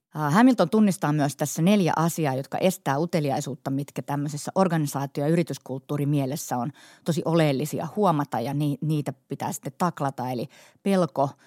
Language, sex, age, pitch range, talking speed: Finnish, female, 30-49, 140-170 Hz, 135 wpm